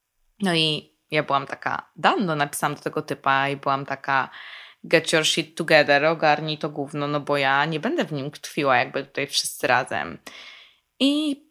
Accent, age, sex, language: native, 20-39, female, Polish